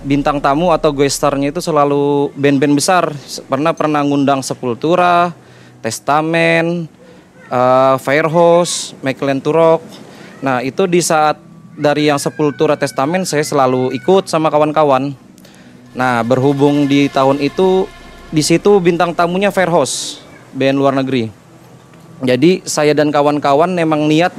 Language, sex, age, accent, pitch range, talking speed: Indonesian, male, 30-49, native, 130-160 Hz, 115 wpm